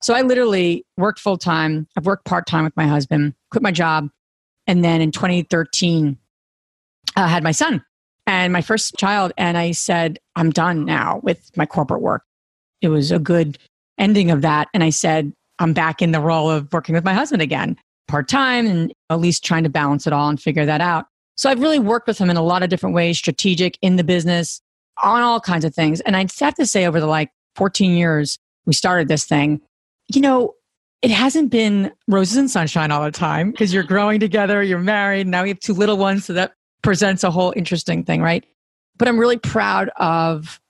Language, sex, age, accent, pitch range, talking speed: English, female, 30-49, American, 160-225 Hz, 210 wpm